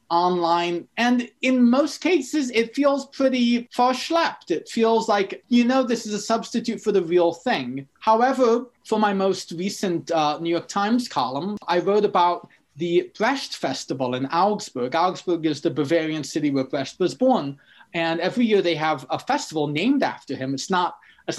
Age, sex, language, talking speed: 30-49, male, English, 175 wpm